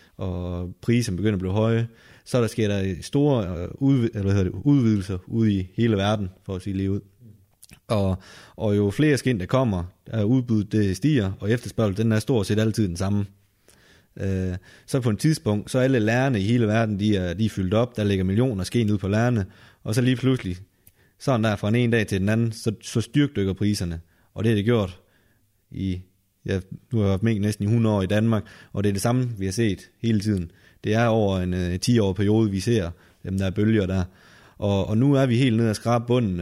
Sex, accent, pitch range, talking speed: male, native, 95-115 Hz, 215 wpm